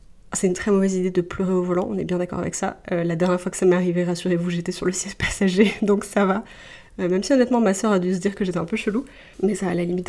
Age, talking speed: 20-39, 295 wpm